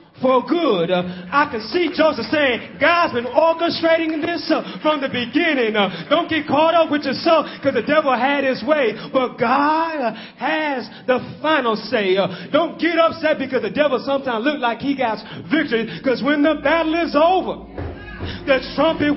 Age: 30-49